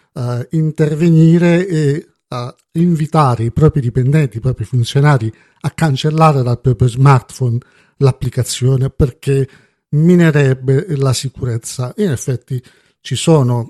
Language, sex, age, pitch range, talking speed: Italian, male, 50-69, 125-170 Hz, 110 wpm